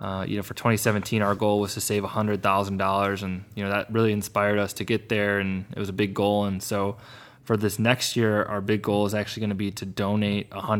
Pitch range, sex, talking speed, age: 100-115 Hz, male, 235 wpm, 20-39